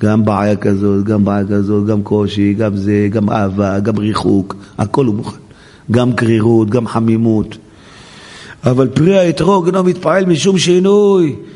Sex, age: male, 50-69